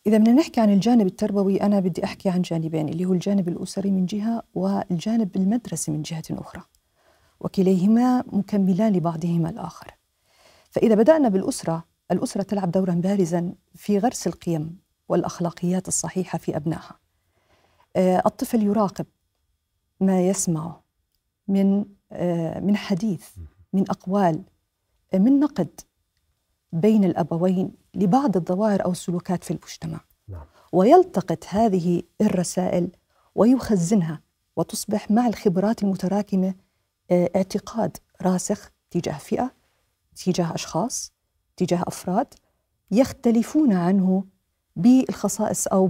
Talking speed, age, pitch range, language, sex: 105 wpm, 50-69, 170-210 Hz, Arabic, female